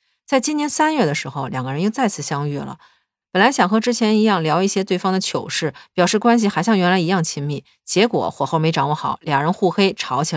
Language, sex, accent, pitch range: Chinese, female, native, 150-210 Hz